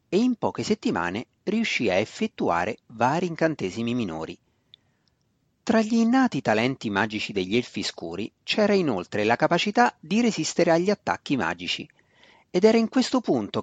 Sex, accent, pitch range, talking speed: male, native, 115-180 Hz, 140 wpm